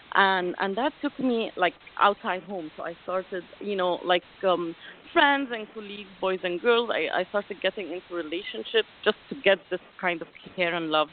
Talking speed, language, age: 195 wpm, English, 30-49